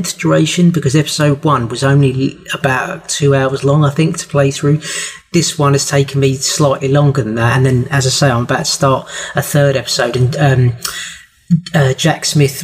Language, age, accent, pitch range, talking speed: English, 30-49, British, 135-150 Hz, 195 wpm